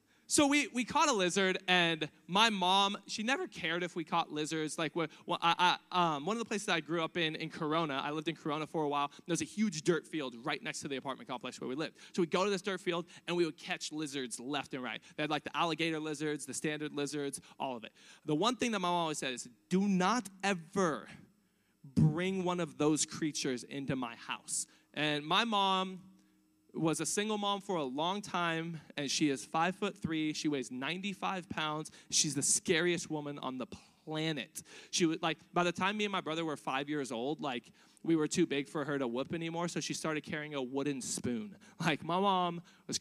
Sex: male